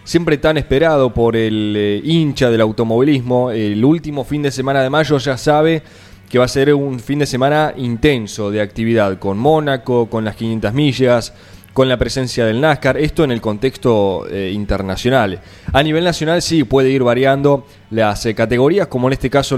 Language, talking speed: Spanish, 185 wpm